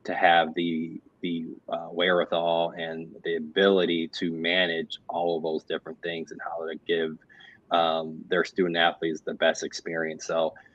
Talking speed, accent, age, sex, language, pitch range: 155 wpm, American, 20-39, male, English, 80-90 Hz